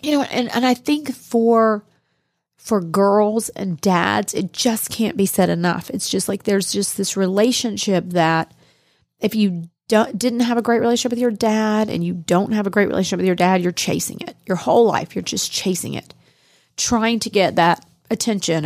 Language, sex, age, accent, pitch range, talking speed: English, female, 30-49, American, 175-230 Hz, 195 wpm